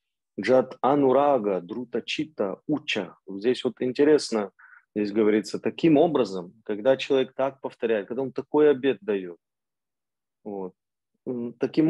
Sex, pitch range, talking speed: male, 110-135 Hz, 100 wpm